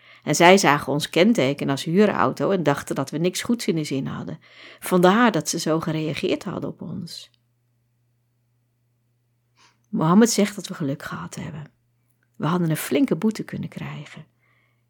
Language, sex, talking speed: Dutch, female, 155 wpm